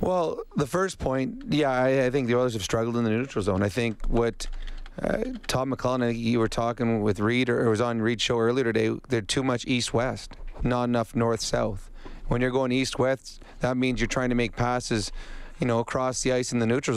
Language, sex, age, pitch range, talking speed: English, male, 30-49, 115-130 Hz, 220 wpm